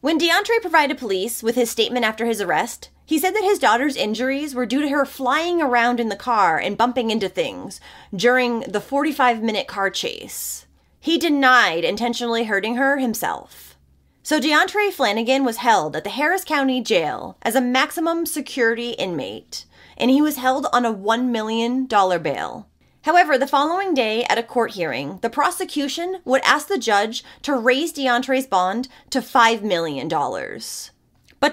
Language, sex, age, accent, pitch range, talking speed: English, female, 30-49, American, 230-300 Hz, 165 wpm